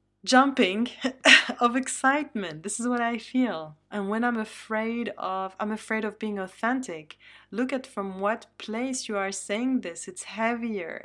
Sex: female